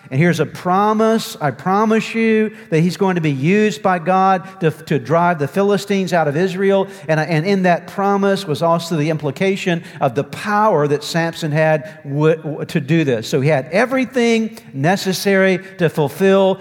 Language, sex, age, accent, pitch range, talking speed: English, male, 50-69, American, 155-190 Hz, 175 wpm